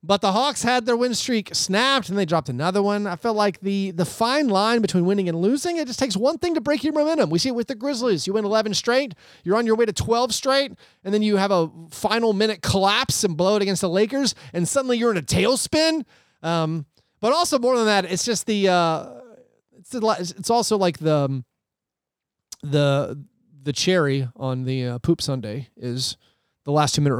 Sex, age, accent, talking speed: male, 30-49, American, 220 wpm